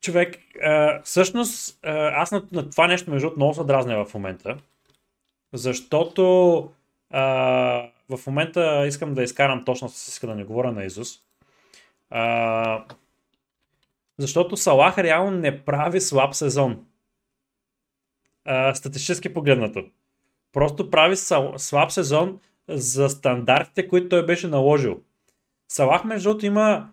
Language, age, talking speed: Bulgarian, 30-49, 120 wpm